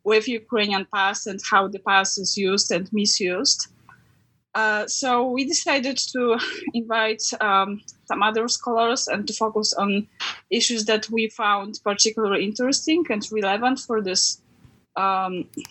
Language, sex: English, female